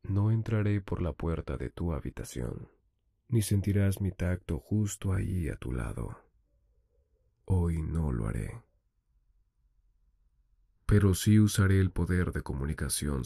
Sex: male